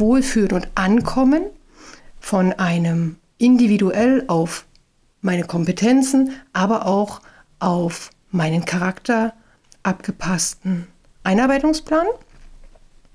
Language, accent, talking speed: German, German, 70 wpm